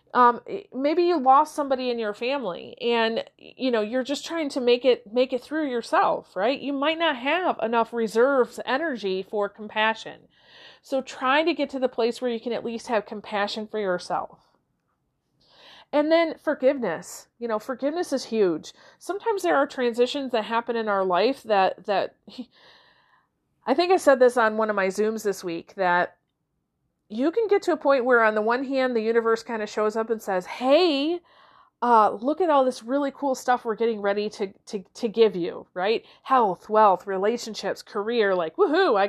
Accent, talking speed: American, 190 wpm